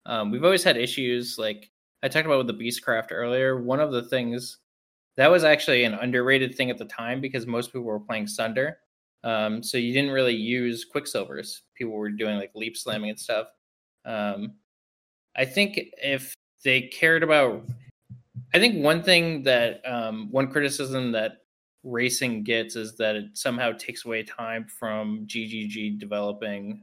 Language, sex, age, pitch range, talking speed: English, male, 20-39, 110-130 Hz, 170 wpm